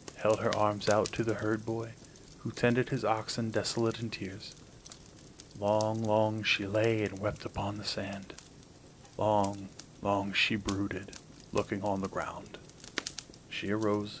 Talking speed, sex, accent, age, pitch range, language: 145 wpm, male, American, 30-49, 100-120 Hz, English